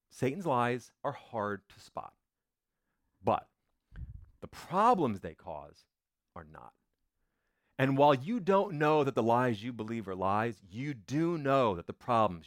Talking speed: 150 wpm